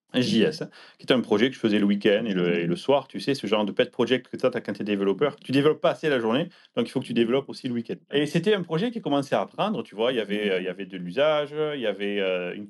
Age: 30-49